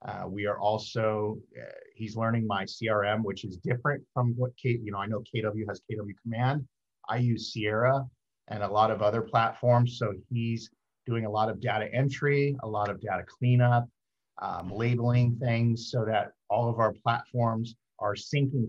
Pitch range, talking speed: 105-125 Hz, 180 wpm